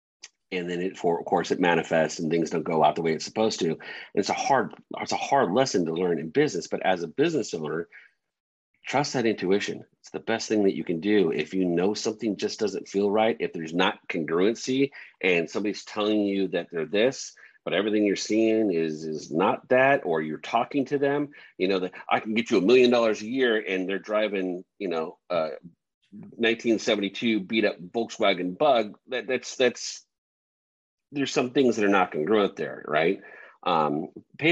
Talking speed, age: 210 wpm, 40-59